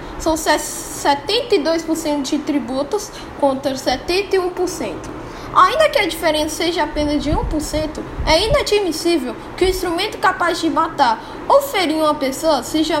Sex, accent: female, Brazilian